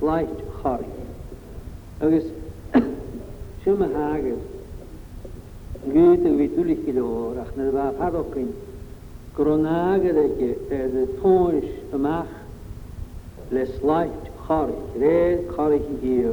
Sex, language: male, English